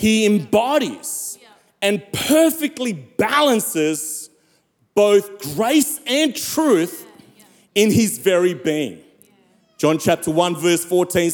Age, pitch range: 40-59, 180-245 Hz